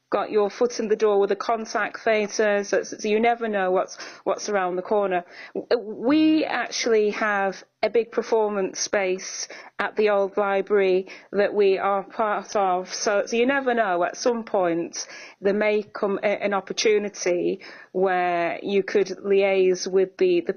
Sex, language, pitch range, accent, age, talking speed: female, English, 190-235 Hz, British, 30-49, 165 wpm